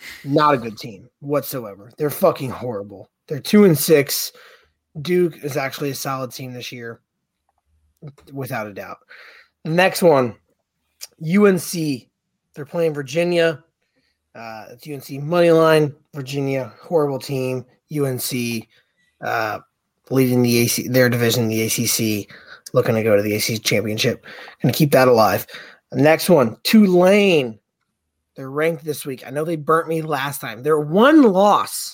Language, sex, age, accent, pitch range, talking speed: English, male, 30-49, American, 120-160 Hz, 140 wpm